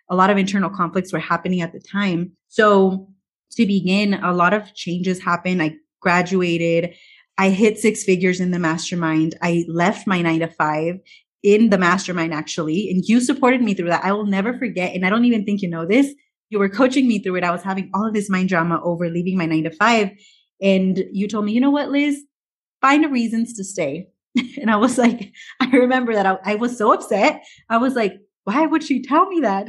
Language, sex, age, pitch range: English, female, 20-39, 175-230 Hz